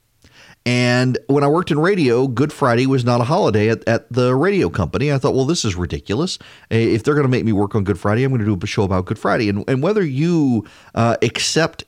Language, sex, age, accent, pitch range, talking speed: English, male, 40-59, American, 110-140 Hz, 245 wpm